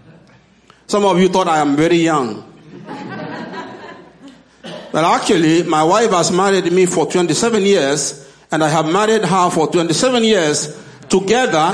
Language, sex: English, male